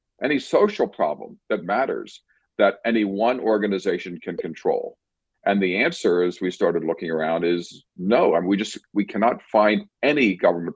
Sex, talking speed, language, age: male, 160 wpm, English, 50-69